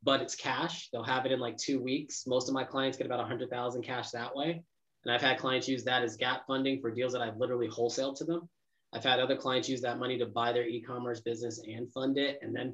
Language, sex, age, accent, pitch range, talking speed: English, male, 20-39, American, 125-150 Hz, 260 wpm